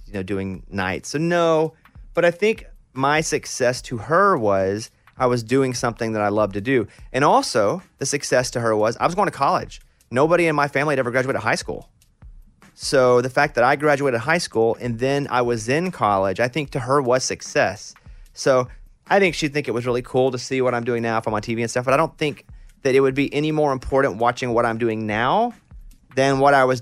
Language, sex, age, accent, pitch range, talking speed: English, male, 30-49, American, 110-140 Hz, 230 wpm